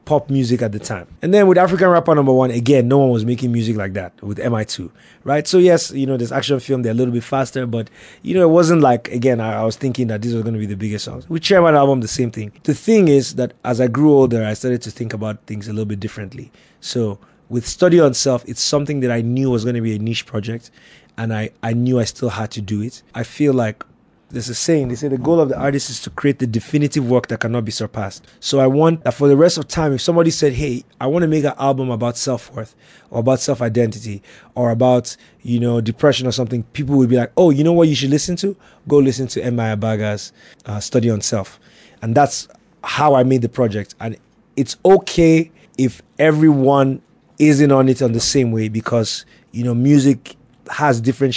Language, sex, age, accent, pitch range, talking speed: English, male, 20-39, Jamaican, 115-140 Hz, 240 wpm